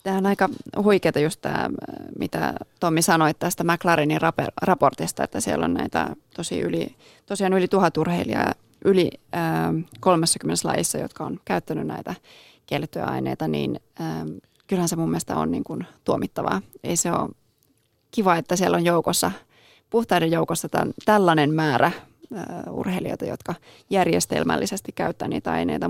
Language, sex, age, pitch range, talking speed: Finnish, female, 30-49, 150-190 Hz, 130 wpm